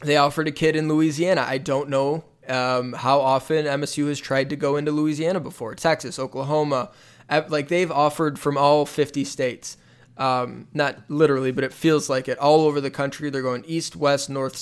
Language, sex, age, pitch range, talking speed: English, male, 20-39, 130-150 Hz, 190 wpm